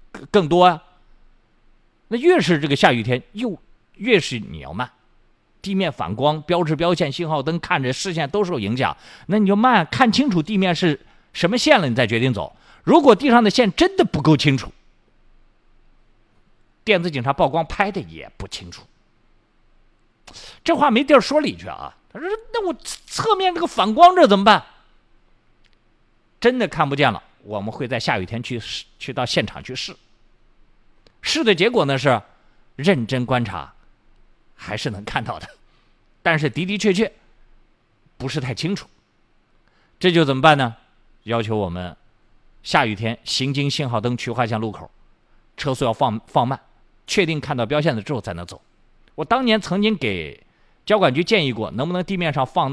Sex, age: male, 50-69